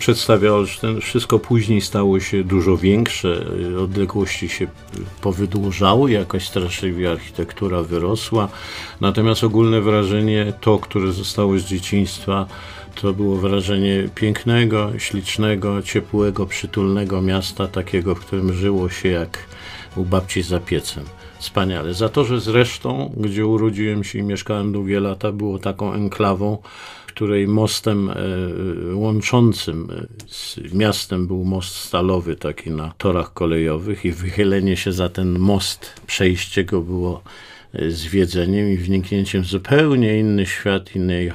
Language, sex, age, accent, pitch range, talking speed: Polish, male, 50-69, native, 95-105 Hz, 125 wpm